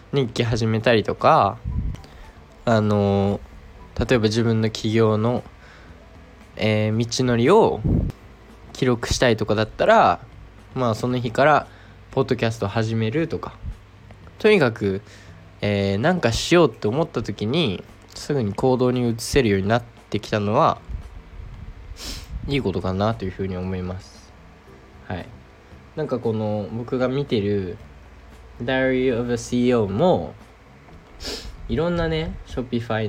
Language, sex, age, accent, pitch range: Japanese, male, 20-39, native, 95-120 Hz